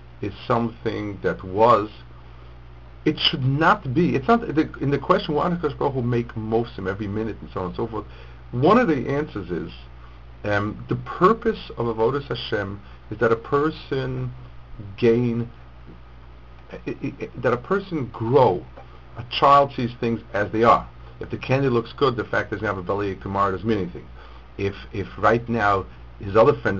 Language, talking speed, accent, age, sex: English, 195 wpm, American, 50-69, male